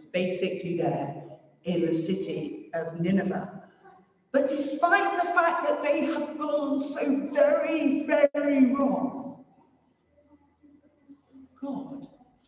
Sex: female